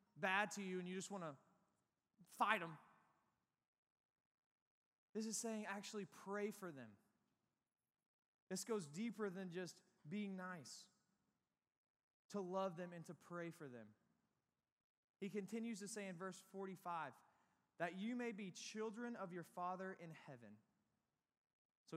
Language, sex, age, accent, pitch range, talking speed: English, male, 20-39, American, 160-200 Hz, 135 wpm